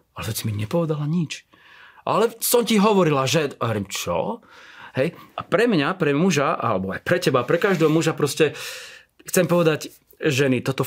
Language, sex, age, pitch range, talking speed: Slovak, male, 30-49, 125-165 Hz, 170 wpm